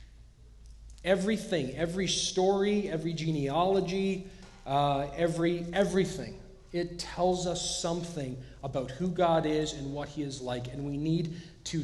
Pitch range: 140-175 Hz